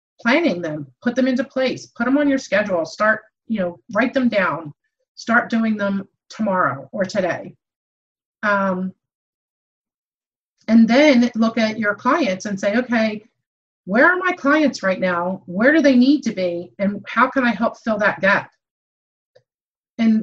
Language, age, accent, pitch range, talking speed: English, 40-59, American, 200-265 Hz, 160 wpm